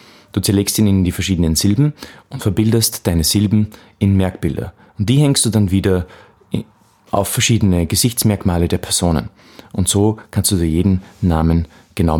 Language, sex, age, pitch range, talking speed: German, male, 30-49, 85-110 Hz, 155 wpm